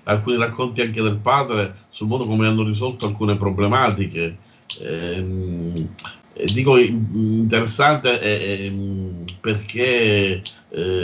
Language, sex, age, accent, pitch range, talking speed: Italian, male, 50-69, native, 105-125 Hz, 105 wpm